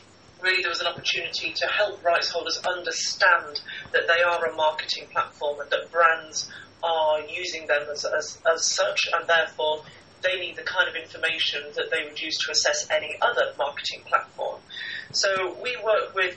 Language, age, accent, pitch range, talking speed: English, 30-49, British, 160-195 Hz, 175 wpm